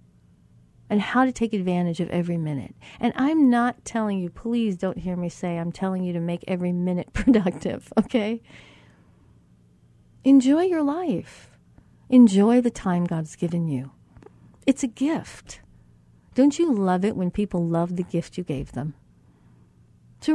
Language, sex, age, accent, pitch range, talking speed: English, female, 40-59, American, 170-235 Hz, 155 wpm